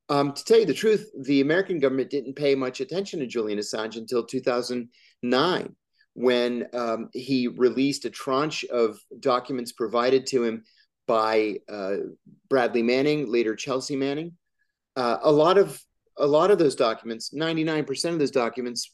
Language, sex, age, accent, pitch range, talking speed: English, male, 40-59, American, 120-165 Hz, 160 wpm